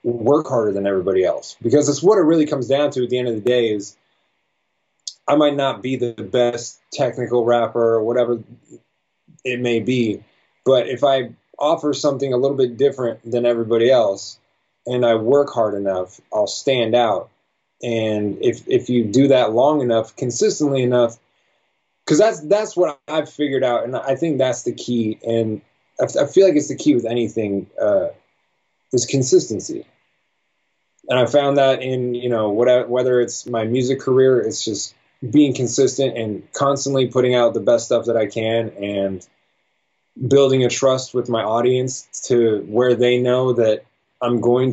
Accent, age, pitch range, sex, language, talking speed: American, 20-39, 115-135 Hz, male, English, 170 wpm